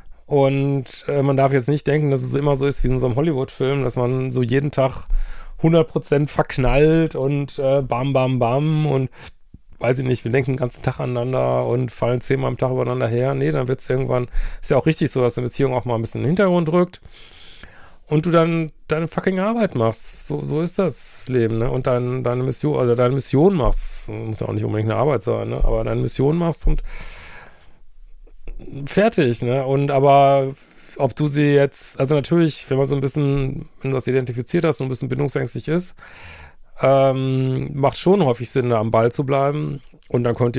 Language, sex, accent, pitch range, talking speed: German, male, German, 120-145 Hz, 205 wpm